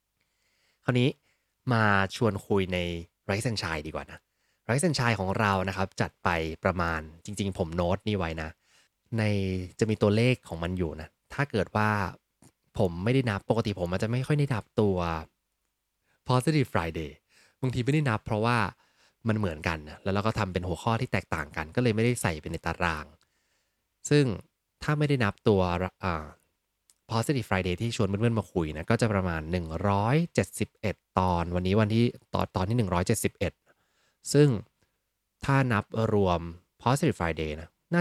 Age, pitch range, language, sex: 20-39, 90-115 Hz, English, male